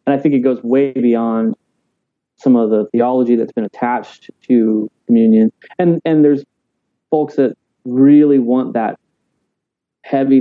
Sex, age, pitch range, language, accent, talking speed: male, 30-49, 115-135 Hz, English, American, 145 wpm